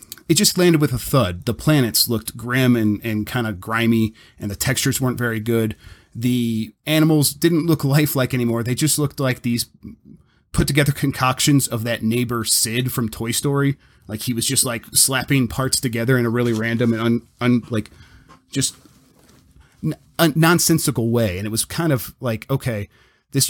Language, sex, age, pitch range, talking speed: English, male, 30-49, 110-130 Hz, 180 wpm